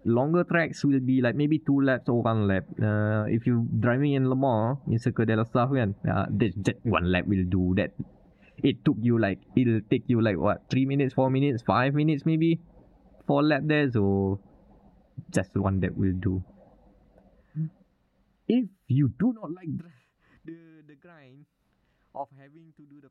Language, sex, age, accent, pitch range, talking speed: English, male, 20-39, Malaysian, 100-145 Hz, 165 wpm